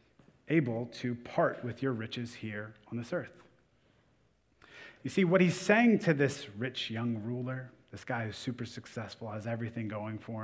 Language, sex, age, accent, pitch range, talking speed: English, male, 30-49, American, 115-175 Hz, 165 wpm